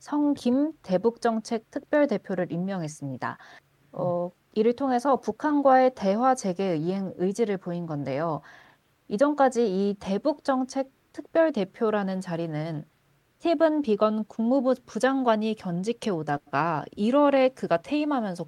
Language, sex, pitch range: Korean, female, 170-255 Hz